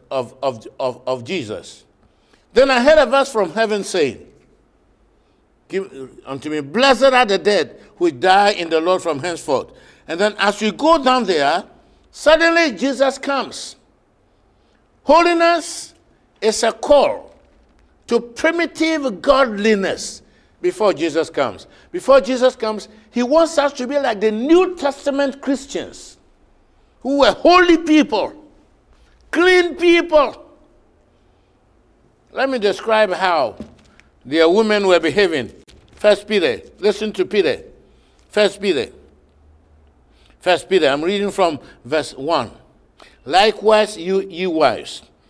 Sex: male